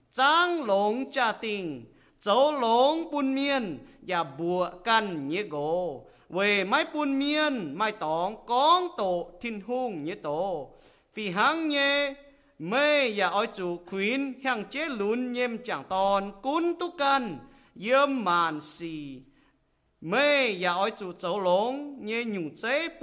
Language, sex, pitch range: English, male, 175-270 Hz